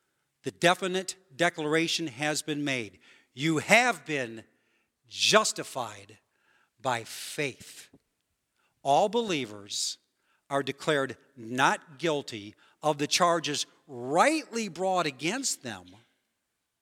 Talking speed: 90 wpm